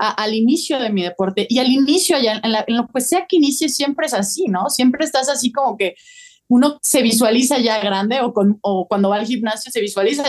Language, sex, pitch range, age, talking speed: Spanish, female, 200-265 Hz, 20-39, 240 wpm